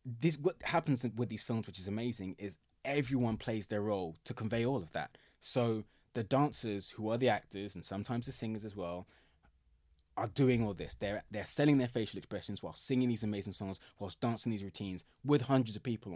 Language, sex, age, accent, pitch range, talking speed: English, male, 20-39, British, 95-125 Hz, 205 wpm